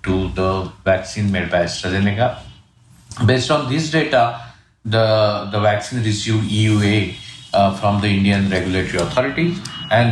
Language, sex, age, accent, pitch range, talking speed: English, male, 50-69, Indian, 95-110 Hz, 130 wpm